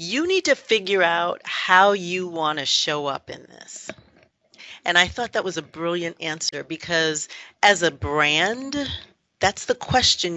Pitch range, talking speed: 160-215 Hz, 160 wpm